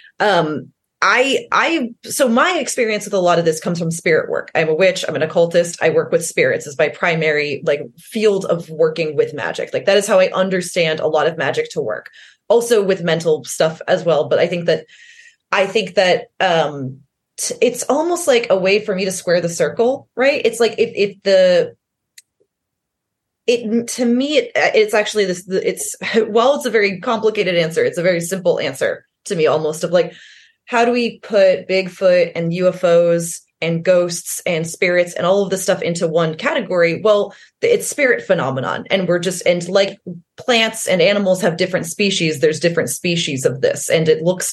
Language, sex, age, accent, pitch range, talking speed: English, female, 20-39, American, 170-245 Hz, 195 wpm